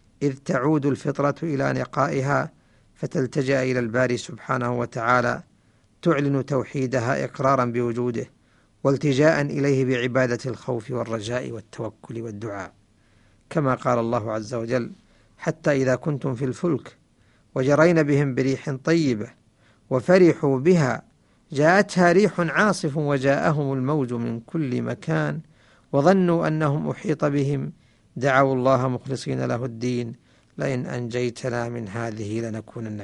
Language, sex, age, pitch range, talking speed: Arabic, male, 50-69, 120-160 Hz, 105 wpm